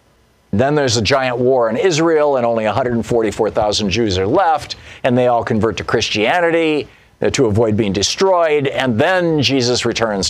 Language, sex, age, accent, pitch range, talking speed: English, male, 50-69, American, 110-150 Hz, 155 wpm